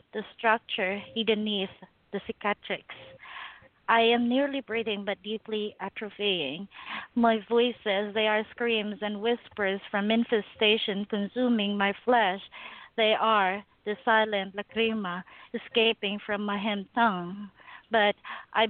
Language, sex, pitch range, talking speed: English, female, 200-235 Hz, 115 wpm